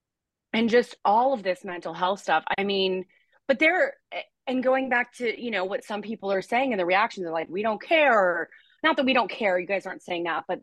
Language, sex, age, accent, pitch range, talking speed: English, female, 30-49, American, 190-275 Hz, 235 wpm